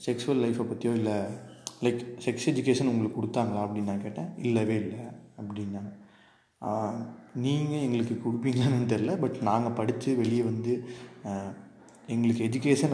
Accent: native